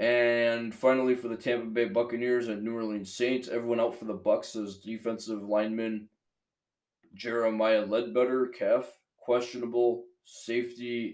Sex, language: male, English